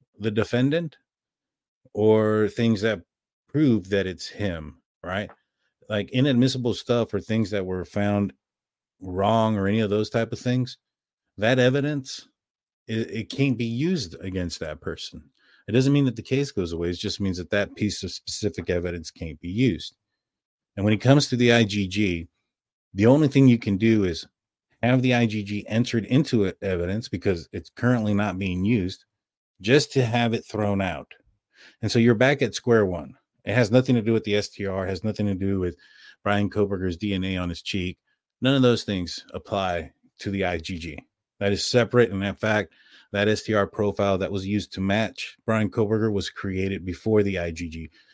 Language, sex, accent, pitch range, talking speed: English, male, American, 95-115 Hz, 180 wpm